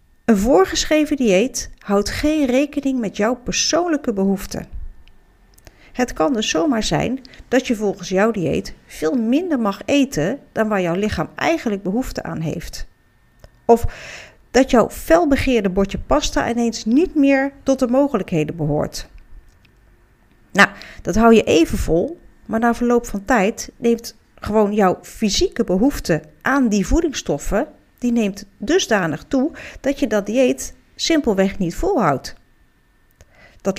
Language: Dutch